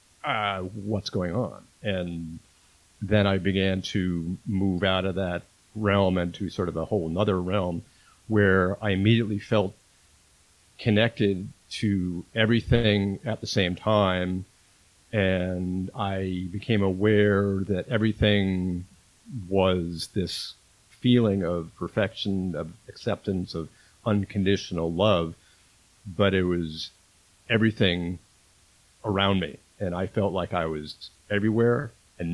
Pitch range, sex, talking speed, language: 90-105 Hz, male, 115 wpm, English